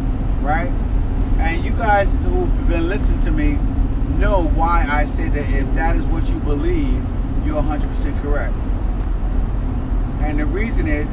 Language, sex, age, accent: English, male, 30-49, American